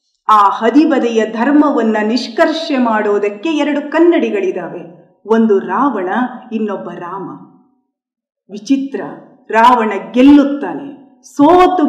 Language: Kannada